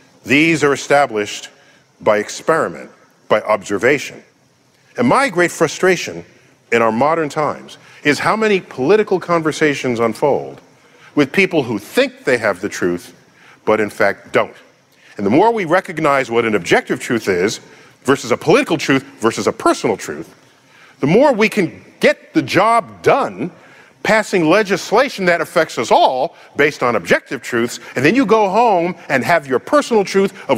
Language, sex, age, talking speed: English, male, 50-69, 155 wpm